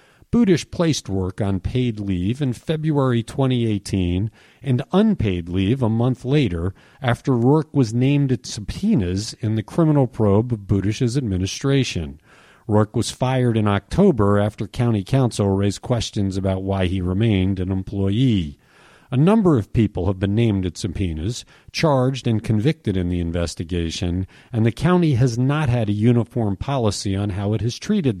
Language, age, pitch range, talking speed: English, 50-69, 95-130 Hz, 155 wpm